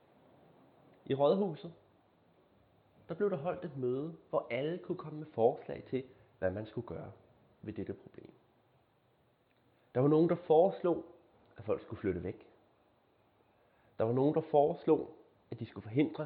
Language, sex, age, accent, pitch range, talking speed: Danish, male, 30-49, native, 130-175 Hz, 150 wpm